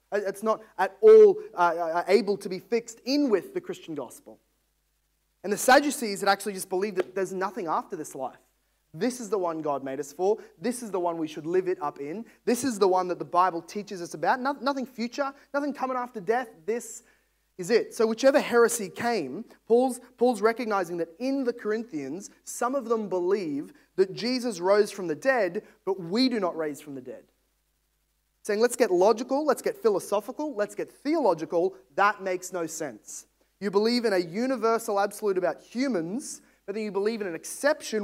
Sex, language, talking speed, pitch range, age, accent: male, English, 190 wpm, 195-255 Hz, 20-39, Australian